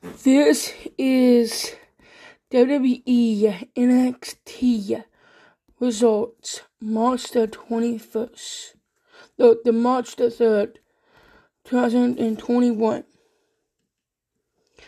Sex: female